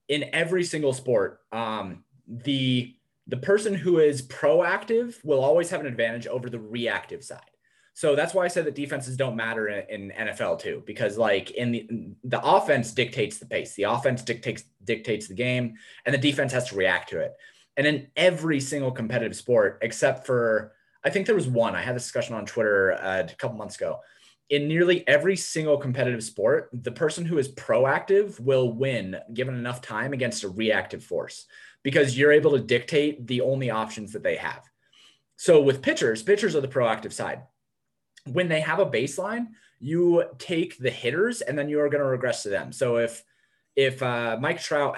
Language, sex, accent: English, male, American